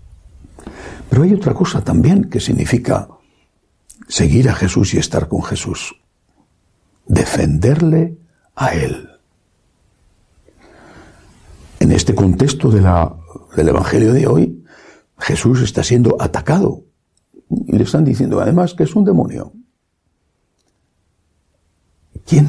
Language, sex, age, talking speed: Spanish, male, 60-79, 105 wpm